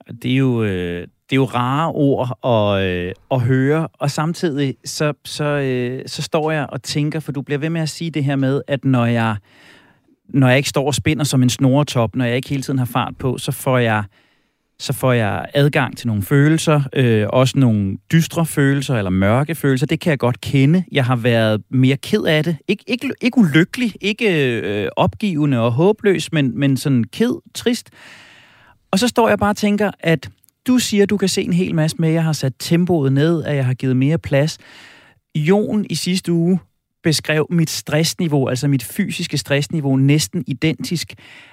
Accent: native